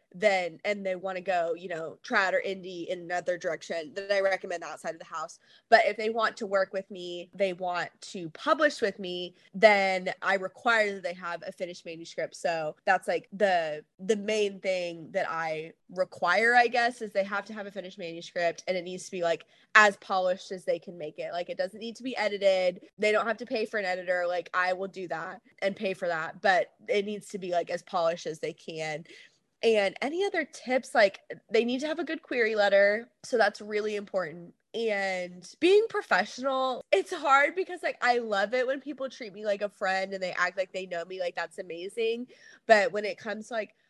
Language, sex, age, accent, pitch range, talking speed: English, female, 20-39, American, 180-250 Hz, 220 wpm